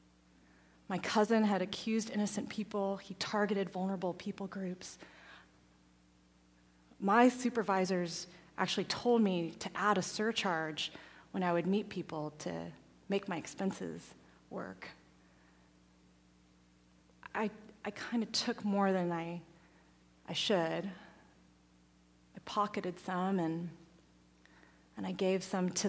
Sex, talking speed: female, 115 wpm